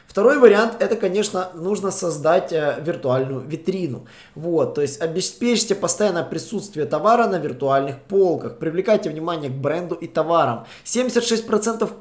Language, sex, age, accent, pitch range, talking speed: Russian, male, 20-39, native, 145-185 Hz, 130 wpm